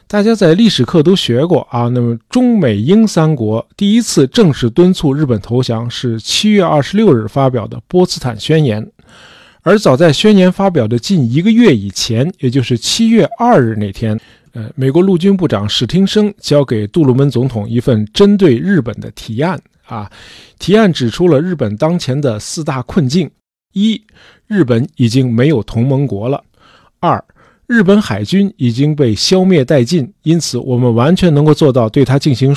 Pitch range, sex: 120-180 Hz, male